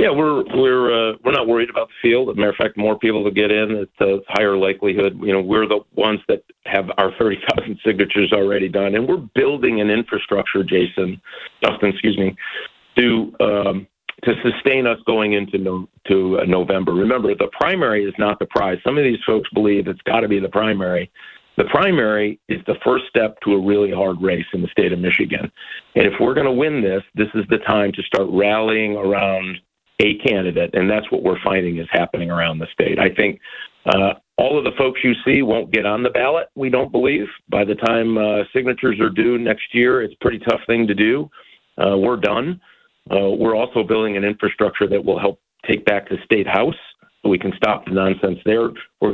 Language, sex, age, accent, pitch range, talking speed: English, male, 50-69, American, 100-115 Hz, 215 wpm